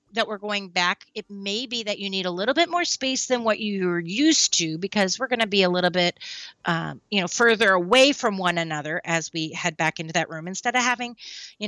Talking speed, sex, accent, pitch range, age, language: 235 wpm, female, American, 180-255 Hz, 30-49, English